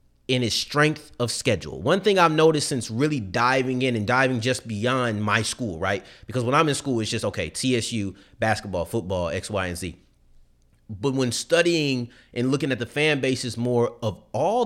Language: English